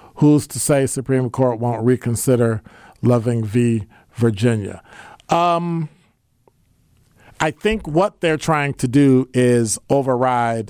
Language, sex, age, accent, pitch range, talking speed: English, male, 50-69, American, 115-150 Hz, 110 wpm